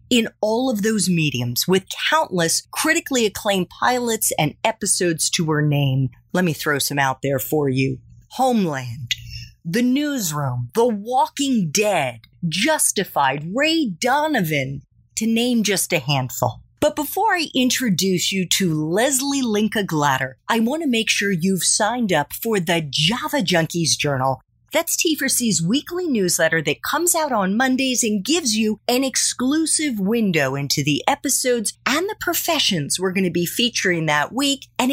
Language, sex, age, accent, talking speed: English, female, 40-59, American, 150 wpm